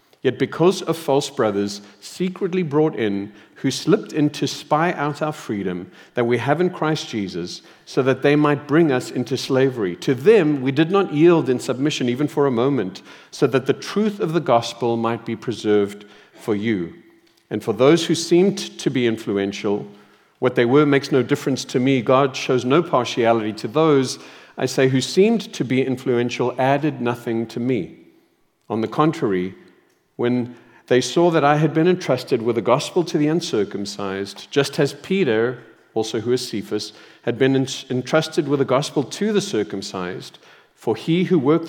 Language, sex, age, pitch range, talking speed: English, male, 50-69, 115-155 Hz, 180 wpm